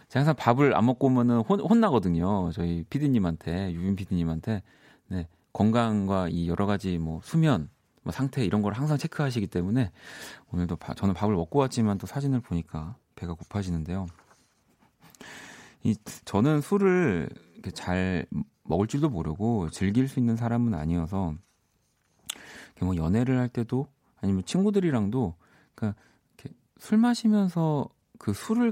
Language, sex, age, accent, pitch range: Korean, male, 40-59, native, 85-125 Hz